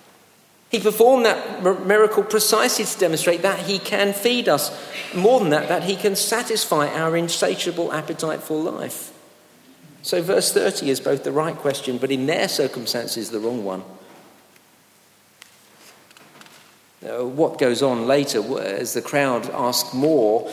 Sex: male